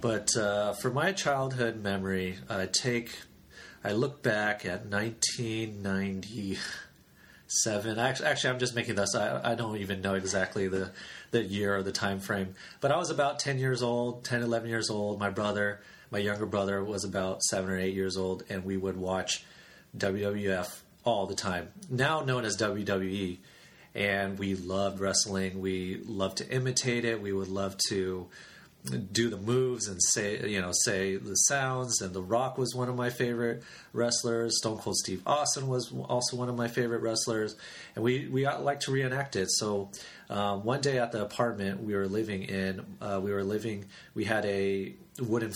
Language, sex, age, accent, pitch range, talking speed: English, male, 30-49, American, 95-120 Hz, 175 wpm